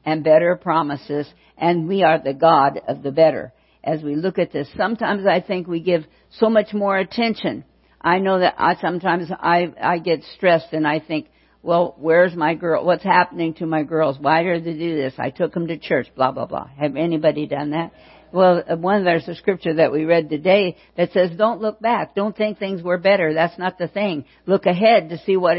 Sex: female